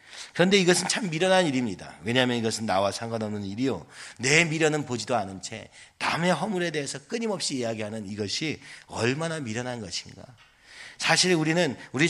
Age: 40-59